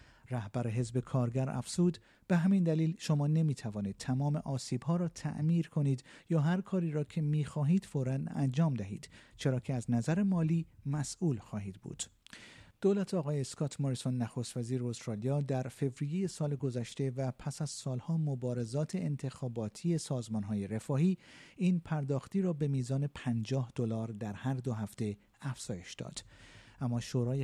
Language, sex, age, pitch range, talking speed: Persian, male, 50-69, 120-155 Hz, 140 wpm